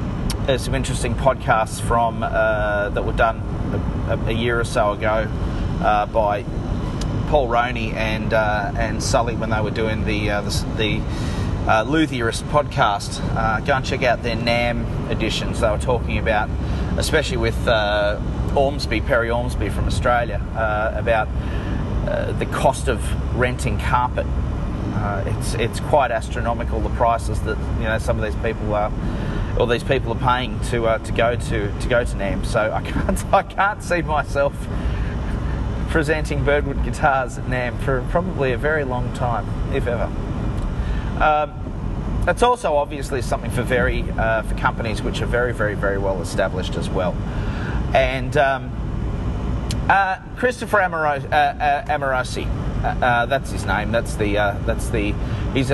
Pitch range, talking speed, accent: 105-130 Hz, 160 wpm, Australian